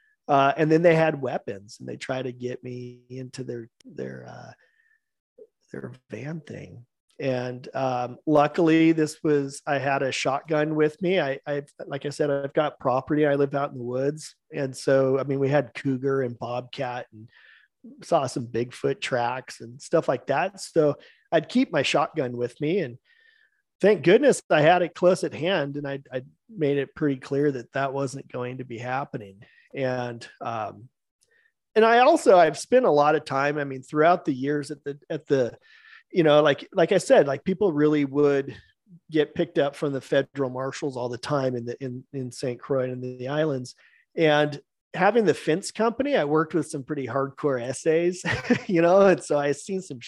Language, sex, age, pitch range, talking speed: English, male, 40-59, 130-165 Hz, 195 wpm